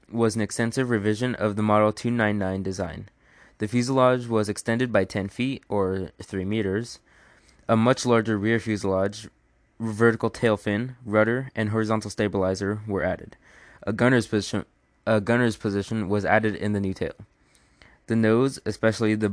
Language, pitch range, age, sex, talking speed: English, 100-115 Hz, 20-39, male, 150 wpm